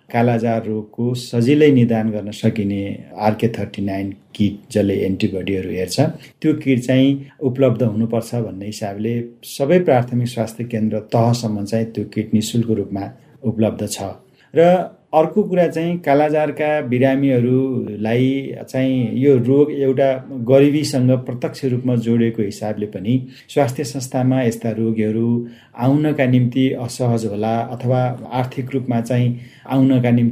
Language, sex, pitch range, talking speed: English, male, 110-135 Hz, 135 wpm